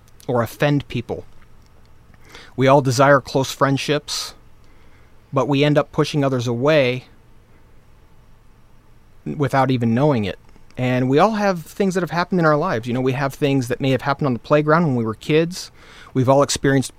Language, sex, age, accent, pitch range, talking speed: English, male, 30-49, American, 125-155 Hz, 175 wpm